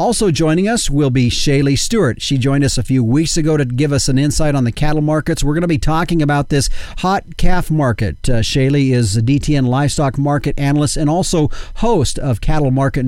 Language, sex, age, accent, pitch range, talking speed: English, male, 40-59, American, 125-155 Hz, 215 wpm